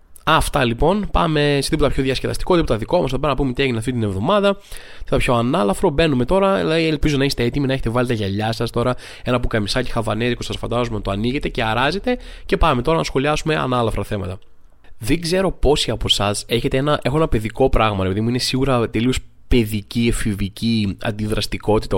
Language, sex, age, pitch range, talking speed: Greek, male, 20-39, 110-145 Hz, 195 wpm